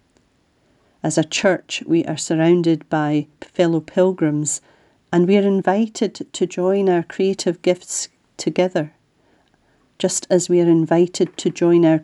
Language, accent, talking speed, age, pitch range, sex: English, British, 135 wpm, 40-59, 160-185 Hz, female